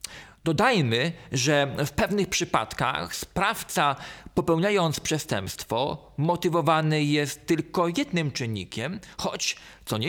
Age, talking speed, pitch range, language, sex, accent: 40-59, 95 wpm, 150-185 Hz, Polish, male, native